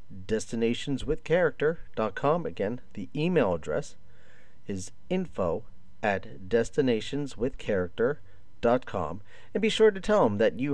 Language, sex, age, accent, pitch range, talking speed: English, male, 40-59, American, 100-135 Hz, 95 wpm